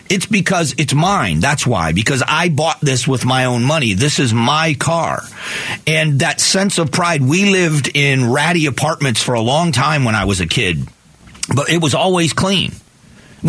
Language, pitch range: English, 135-175 Hz